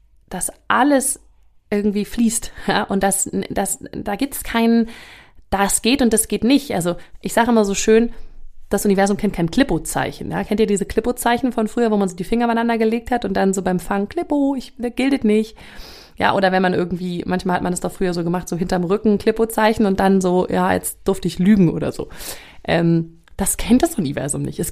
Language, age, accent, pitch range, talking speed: German, 30-49, German, 180-235 Hz, 210 wpm